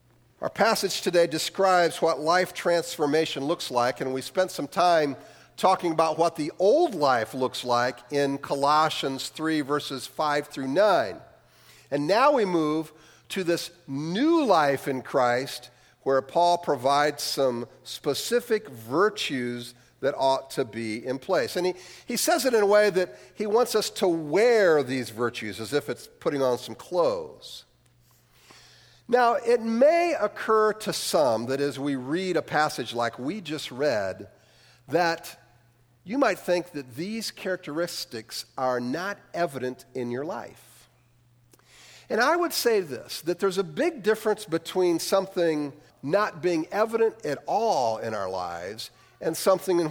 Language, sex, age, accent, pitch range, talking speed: English, male, 50-69, American, 130-185 Hz, 150 wpm